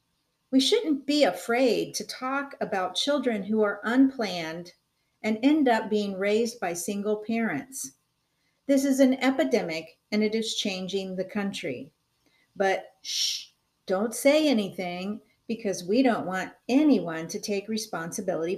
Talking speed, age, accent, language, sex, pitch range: 135 wpm, 50-69, American, English, female, 190-265 Hz